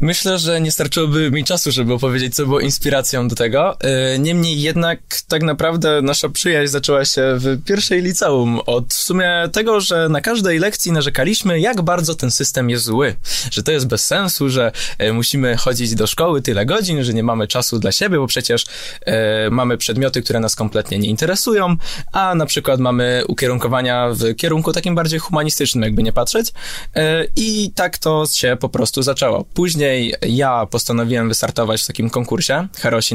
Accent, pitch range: native, 120-165 Hz